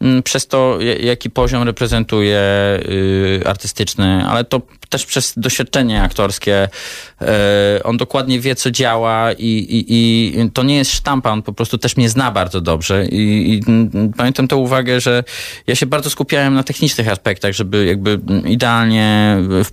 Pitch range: 100-120 Hz